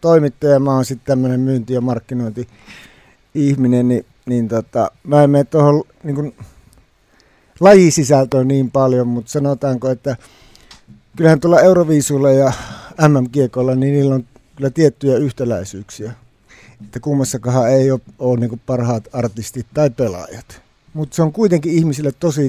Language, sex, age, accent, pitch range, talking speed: Finnish, male, 60-79, native, 120-145 Hz, 130 wpm